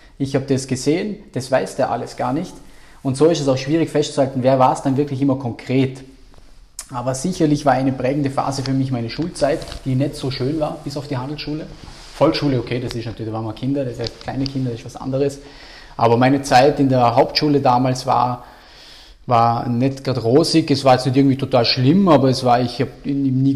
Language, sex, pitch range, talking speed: German, male, 125-145 Hz, 220 wpm